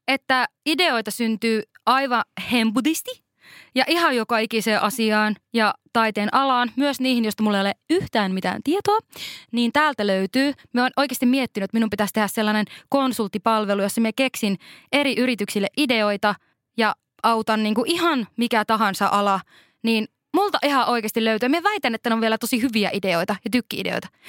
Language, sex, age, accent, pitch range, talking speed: Finnish, female, 20-39, native, 210-275 Hz, 160 wpm